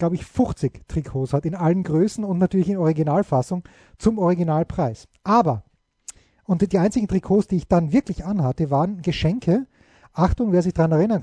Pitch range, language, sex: 155-200 Hz, German, male